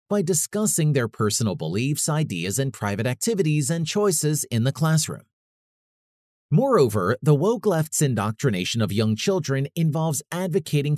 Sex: male